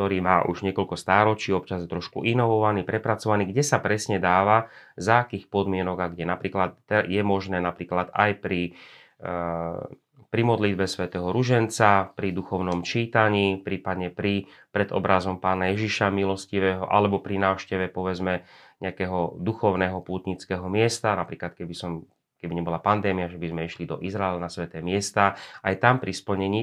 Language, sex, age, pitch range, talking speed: Slovak, male, 30-49, 90-105 Hz, 145 wpm